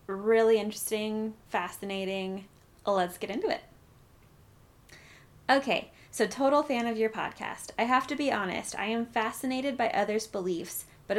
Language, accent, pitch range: English, American, 190-230 Hz